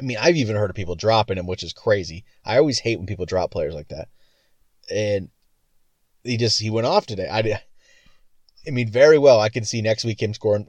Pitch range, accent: 100-120 Hz, American